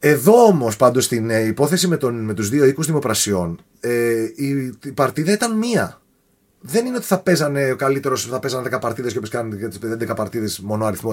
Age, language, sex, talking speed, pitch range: 30-49, Greek, male, 200 wpm, 125-180 Hz